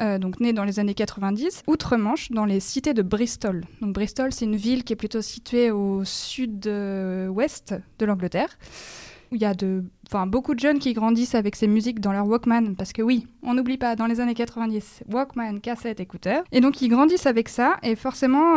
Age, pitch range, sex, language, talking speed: 20-39, 215-255 Hz, female, French, 205 wpm